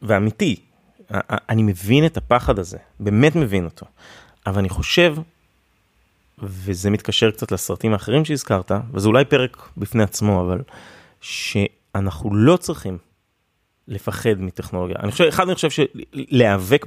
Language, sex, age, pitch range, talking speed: Hebrew, male, 30-49, 100-140 Hz, 125 wpm